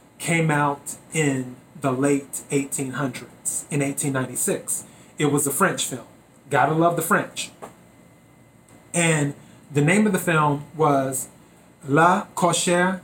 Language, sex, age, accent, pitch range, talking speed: English, male, 30-49, American, 135-165 Hz, 120 wpm